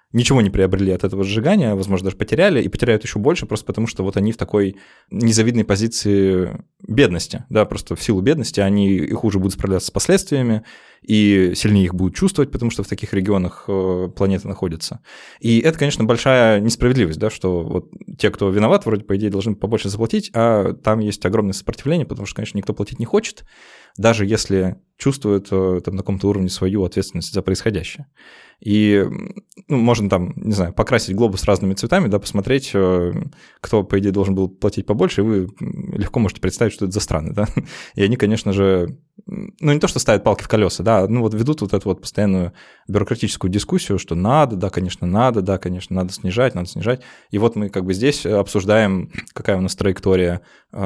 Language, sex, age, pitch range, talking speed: Russian, male, 20-39, 95-115 Hz, 190 wpm